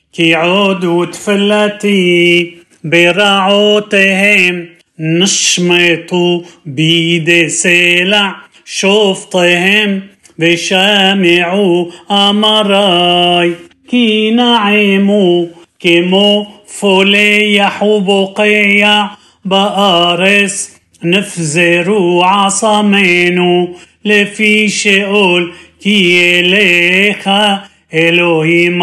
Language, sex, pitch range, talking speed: Hebrew, male, 175-205 Hz, 50 wpm